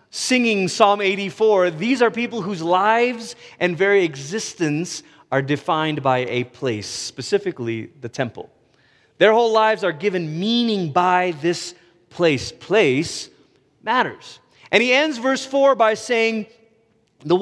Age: 30-49